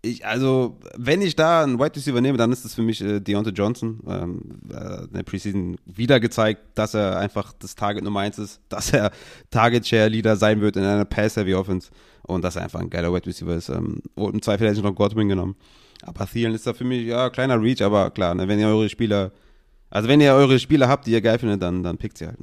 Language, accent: German, German